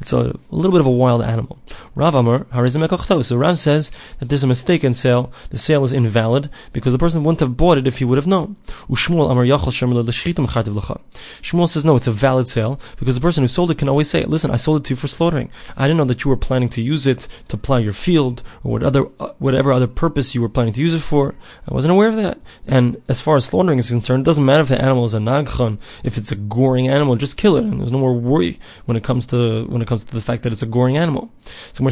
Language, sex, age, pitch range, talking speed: English, male, 20-39, 120-155 Hz, 255 wpm